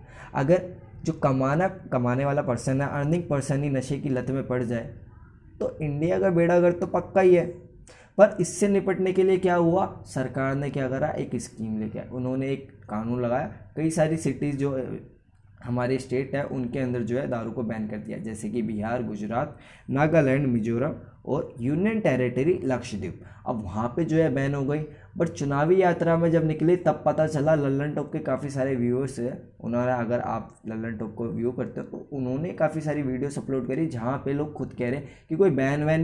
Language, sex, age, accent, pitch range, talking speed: Hindi, male, 20-39, native, 120-155 Hz, 200 wpm